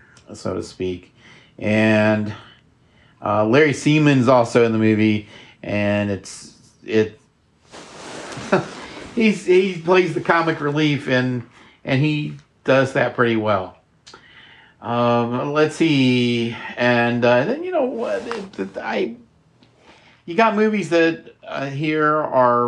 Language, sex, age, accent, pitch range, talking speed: English, male, 50-69, American, 110-140 Hz, 120 wpm